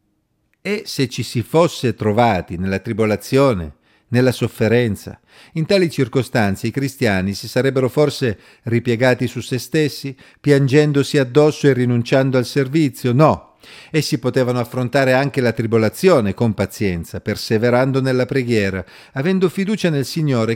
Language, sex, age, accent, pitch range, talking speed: Italian, male, 50-69, native, 110-145 Hz, 130 wpm